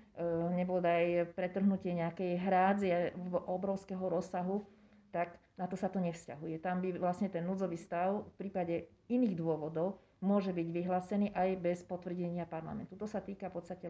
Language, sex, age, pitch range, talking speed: Slovak, female, 40-59, 175-190 Hz, 145 wpm